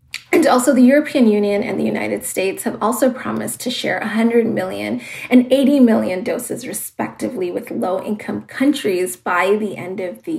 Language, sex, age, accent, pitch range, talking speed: English, female, 30-49, American, 205-265 Hz, 170 wpm